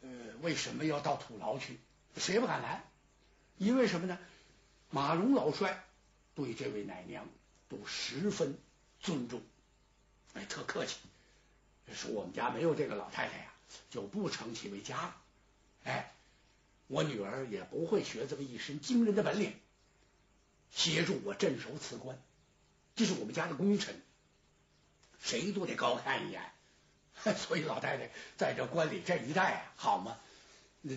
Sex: male